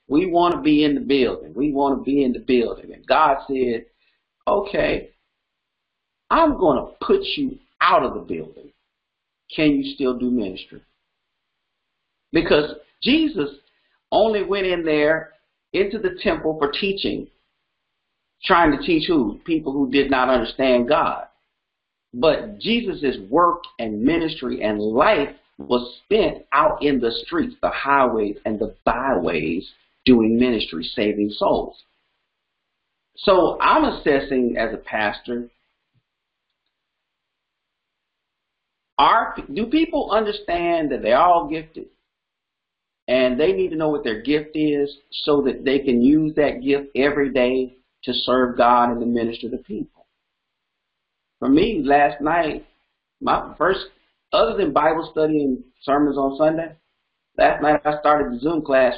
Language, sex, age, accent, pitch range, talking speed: English, male, 50-69, American, 125-170 Hz, 140 wpm